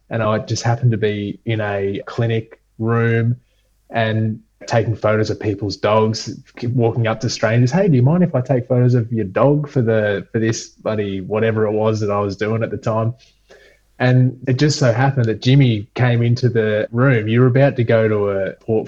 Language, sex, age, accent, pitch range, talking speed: English, male, 20-39, Australian, 105-125 Hz, 205 wpm